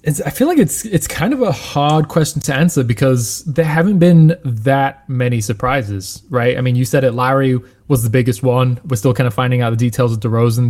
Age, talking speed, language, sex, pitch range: 20-39, 225 wpm, English, male, 120-140 Hz